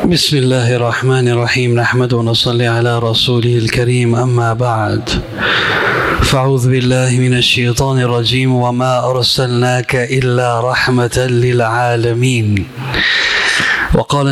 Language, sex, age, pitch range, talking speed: Spanish, male, 30-49, 125-150 Hz, 90 wpm